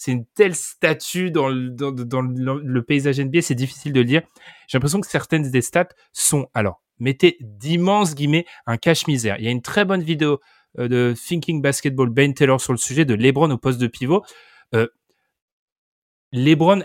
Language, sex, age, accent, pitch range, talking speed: French, male, 20-39, French, 125-165 Hz, 195 wpm